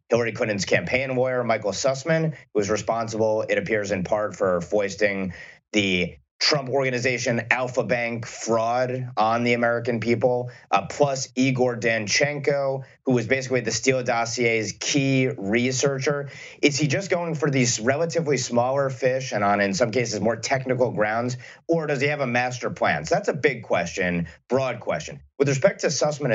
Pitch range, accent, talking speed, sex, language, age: 115-140 Hz, American, 165 wpm, male, English, 30-49